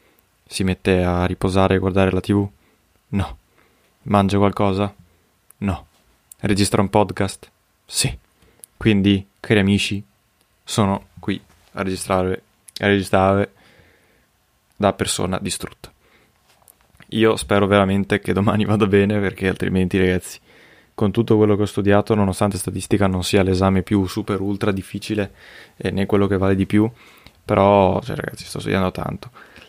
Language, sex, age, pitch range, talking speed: Italian, male, 20-39, 95-105 Hz, 130 wpm